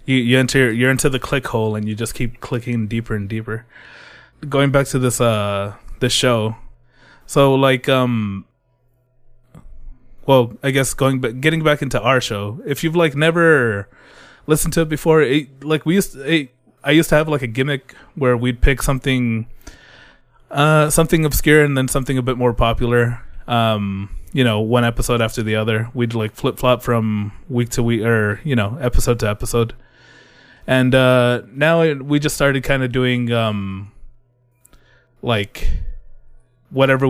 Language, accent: English, American